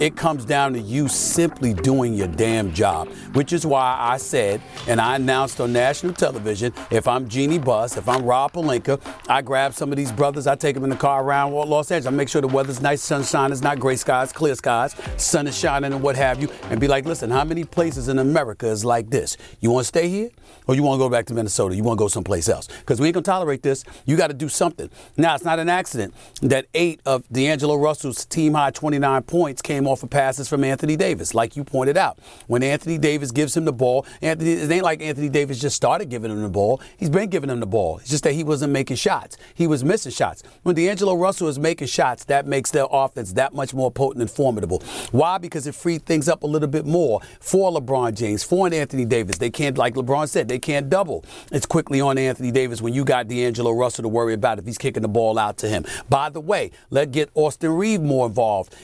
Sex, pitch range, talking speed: male, 125-155 Hz, 240 wpm